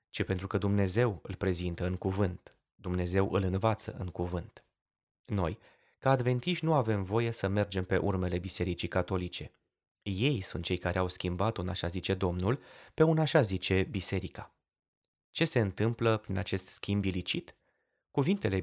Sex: male